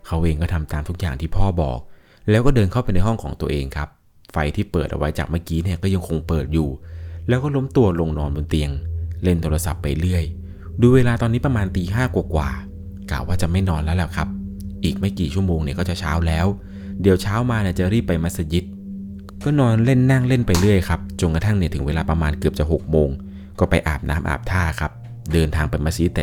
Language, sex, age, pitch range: Thai, male, 20-39, 80-100 Hz